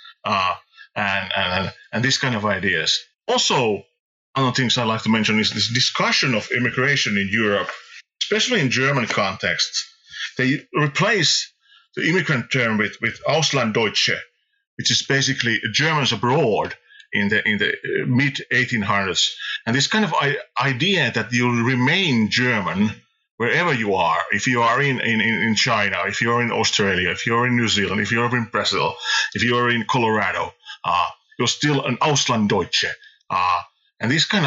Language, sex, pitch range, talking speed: English, male, 110-155 Hz, 160 wpm